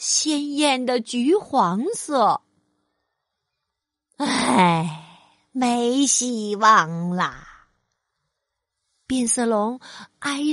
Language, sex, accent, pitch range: Chinese, female, native, 215-335 Hz